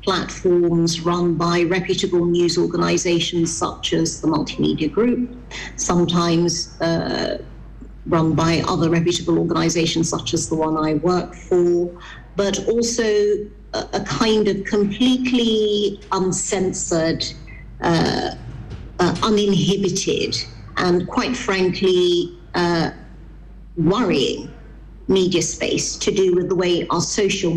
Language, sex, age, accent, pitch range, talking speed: English, female, 50-69, British, 170-200 Hz, 110 wpm